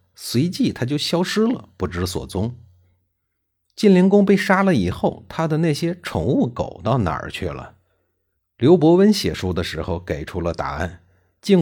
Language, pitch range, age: Chinese, 90-140 Hz, 50-69